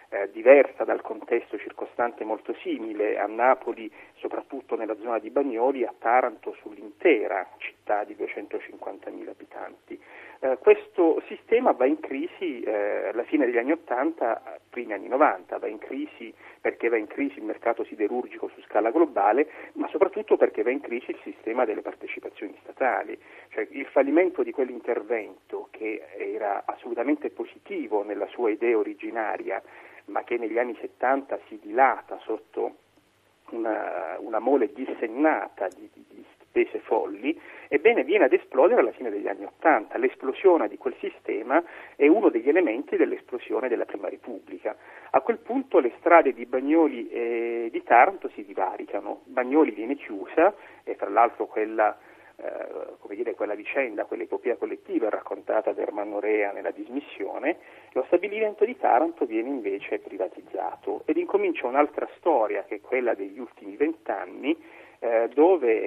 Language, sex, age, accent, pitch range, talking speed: Italian, male, 40-59, native, 330-420 Hz, 145 wpm